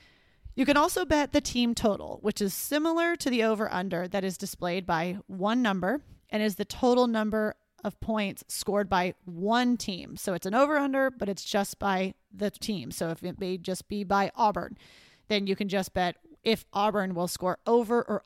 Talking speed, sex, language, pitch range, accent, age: 195 wpm, female, English, 195-240 Hz, American, 30-49